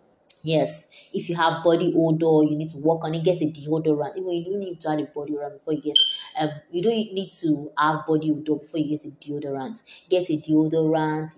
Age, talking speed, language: 20-39, 220 wpm, English